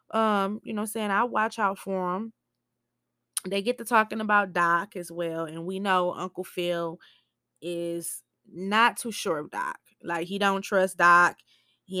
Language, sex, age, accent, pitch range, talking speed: English, female, 20-39, American, 180-285 Hz, 170 wpm